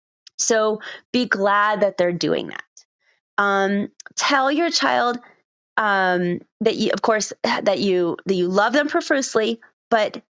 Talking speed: 140 wpm